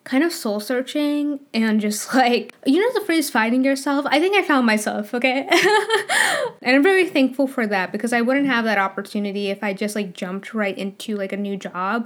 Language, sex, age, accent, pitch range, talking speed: English, female, 10-29, American, 210-265 Hz, 210 wpm